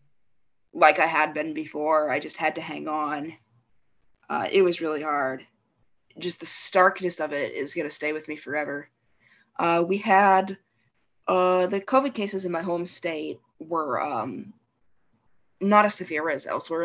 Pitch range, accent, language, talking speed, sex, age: 155-185 Hz, American, English, 165 wpm, female, 20-39